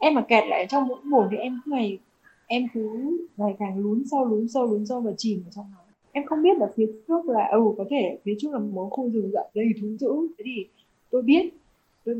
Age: 20-39